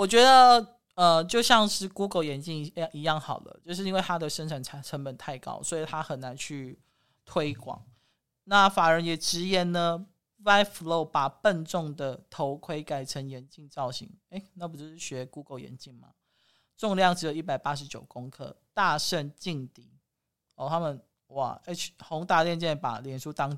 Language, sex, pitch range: Chinese, male, 140-175 Hz